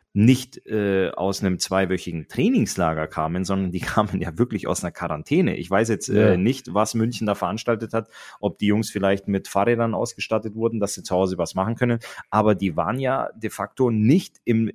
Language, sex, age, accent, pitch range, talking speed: German, male, 30-49, German, 100-125 Hz, 195 wpm